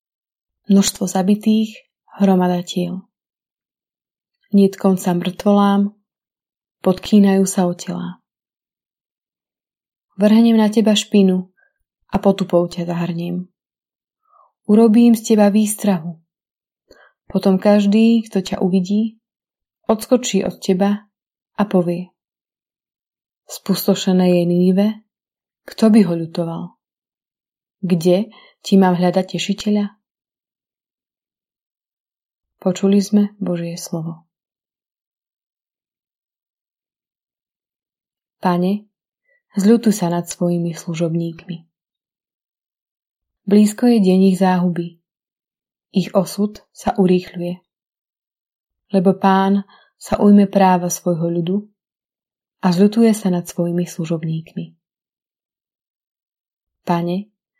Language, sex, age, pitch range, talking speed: Slovak, female, 20-39, 175-210 Hz, 80 wpm